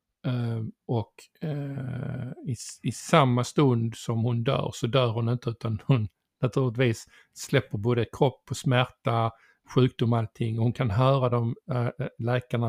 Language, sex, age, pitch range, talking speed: Swedish, male, 50-69, 115-135 Hz, 145 wpm